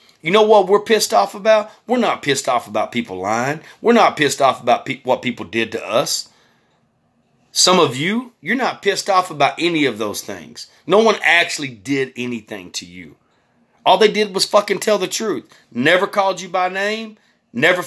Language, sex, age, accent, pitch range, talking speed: English, male, 30-49, American, 120-195 Hz, 190 wpm